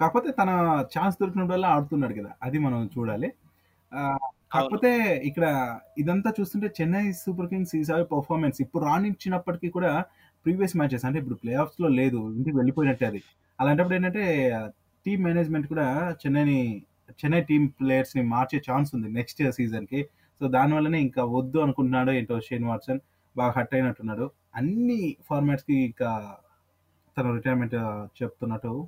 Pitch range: 130-175 Hz